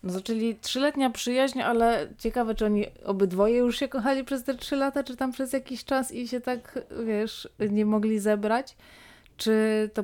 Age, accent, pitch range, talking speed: 20-39, native, 190-235 Hz, 180 wpm